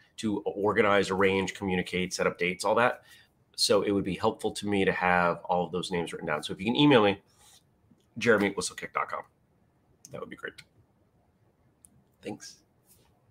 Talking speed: 160 wpm